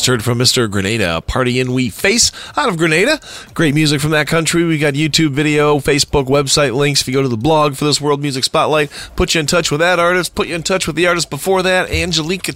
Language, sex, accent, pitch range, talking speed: English, male, American, 125-170 Hz, 245 wpm